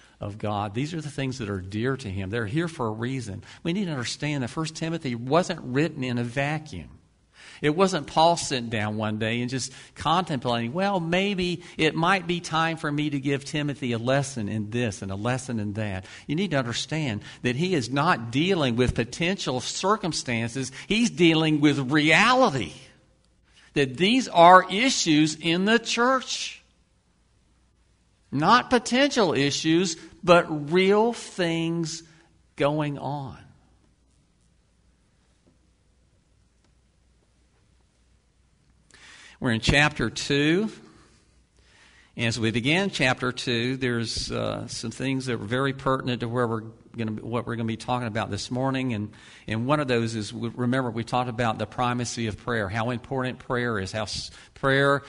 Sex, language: male, English